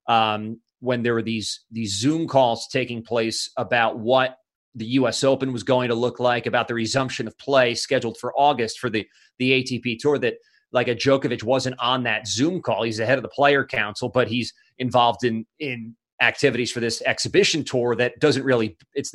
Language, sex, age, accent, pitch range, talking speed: English, male, 30-49, American, 115-140 Hz, 195 wpm